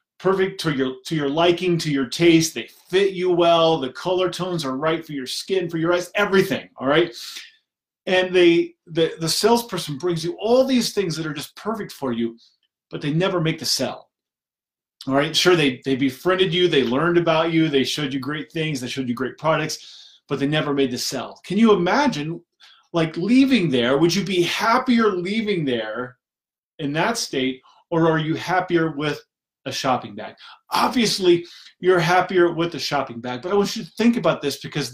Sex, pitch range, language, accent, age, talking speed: male, 150-190 Hz, English, American, 30-49, 200 wpm